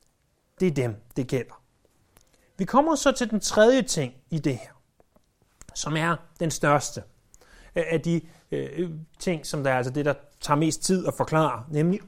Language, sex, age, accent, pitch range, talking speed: Danish, male, 30-49, native, 140-200 Hz, 170 wpm